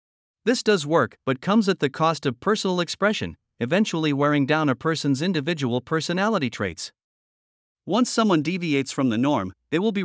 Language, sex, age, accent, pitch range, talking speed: English, male, 50-69, American, 130-175 Hz, 165 wpm